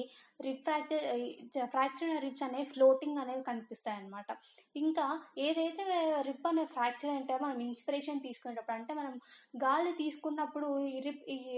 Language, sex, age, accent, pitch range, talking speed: Telugu, female, 20-39, native, 250-300 Hz, 115 wpm